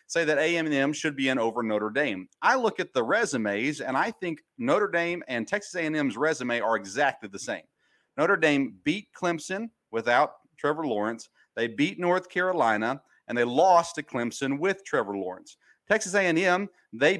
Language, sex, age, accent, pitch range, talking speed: English, male, 40-59, American, 125-180 Hz, 170 wpm